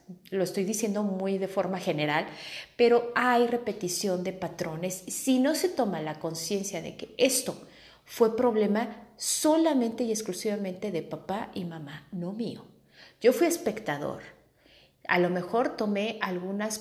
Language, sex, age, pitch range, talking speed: Spanish, female, 40-59, 180-230 Hz, 145 wpm